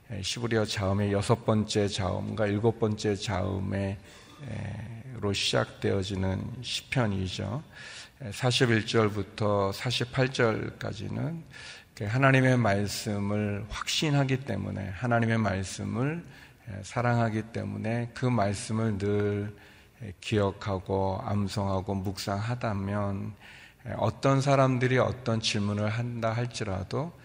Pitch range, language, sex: 100-115 Hz, Korean, male